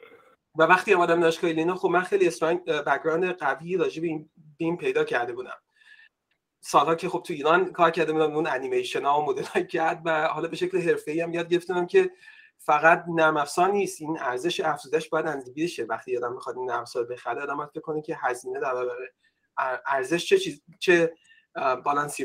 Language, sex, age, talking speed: Persian, male, 30-49, 175 wpm